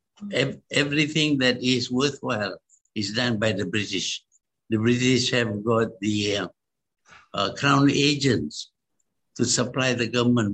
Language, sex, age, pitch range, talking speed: English, male, 60-79, 115-145 Hz, 125 wpm